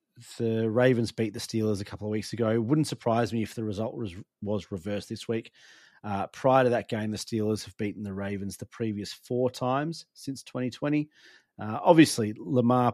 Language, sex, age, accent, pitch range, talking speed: English, male, 30-49, Australian, 105-120 Hz, 195 wpm